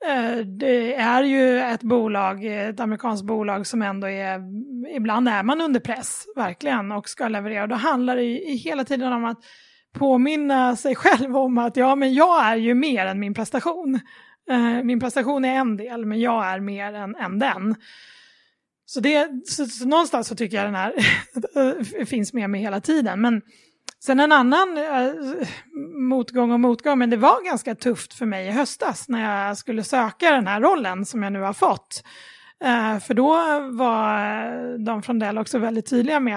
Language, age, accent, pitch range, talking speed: Swedish, 20-39, native, 220-270 Hz, 180 wpm